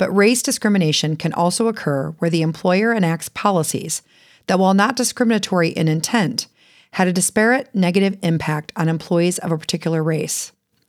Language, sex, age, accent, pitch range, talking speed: English, female, 40-59, American, 160-205 Hz, 155 wpm